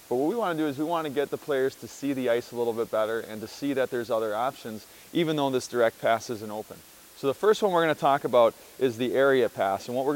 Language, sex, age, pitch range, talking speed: English, male, 30-49, 130-165 Hz, 285 wpm